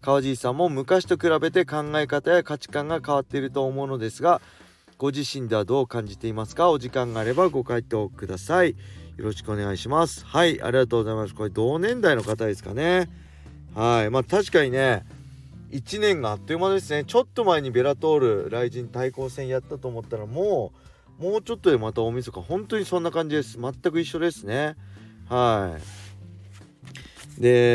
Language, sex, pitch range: Japanese, male, 110-150 Hz